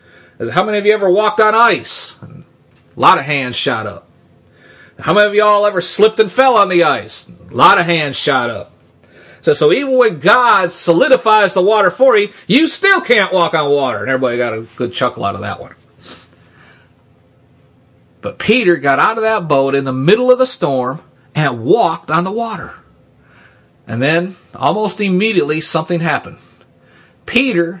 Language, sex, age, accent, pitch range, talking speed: English, male, 30-49, American, 145-230 Hz, 180 wpm